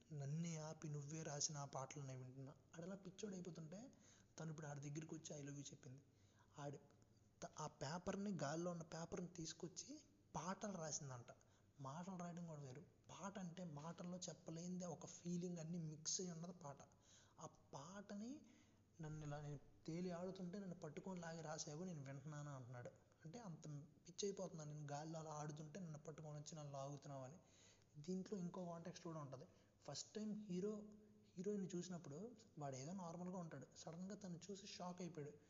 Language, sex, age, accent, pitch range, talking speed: Telugu, male, 20-39, native, 135-175 Hz, 140 wpm